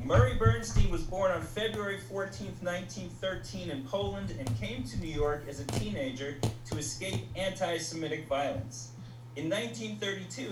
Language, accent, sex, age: English, American, male, 30-49